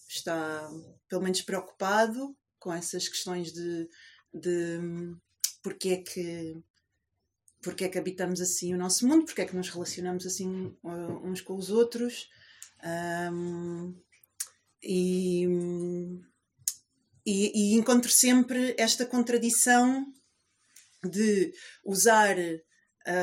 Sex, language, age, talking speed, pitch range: female, Portuguese, 30-49, 105 wpm, 175-220 Hz